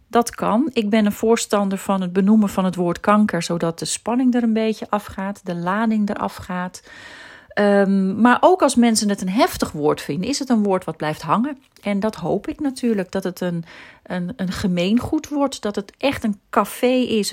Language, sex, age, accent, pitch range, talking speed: Dutch, female, 40-59, Dutch, 170-225 Hz, 205 wpm